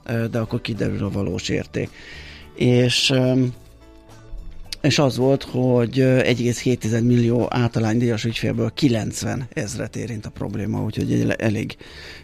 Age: 30-49